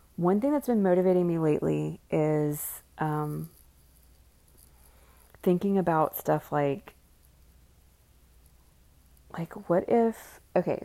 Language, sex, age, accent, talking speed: English, female, 20-39, American, 95 wpm